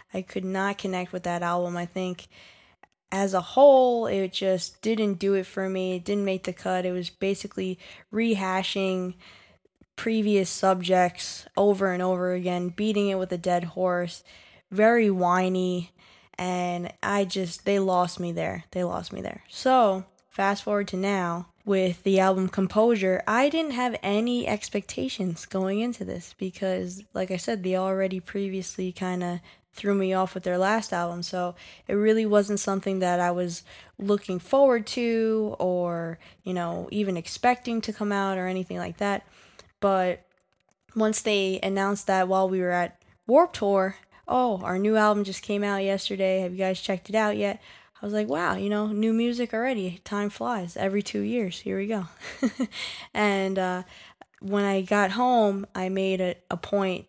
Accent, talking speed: American, 170 wpm